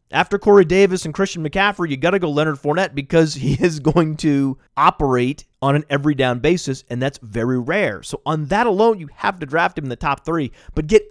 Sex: male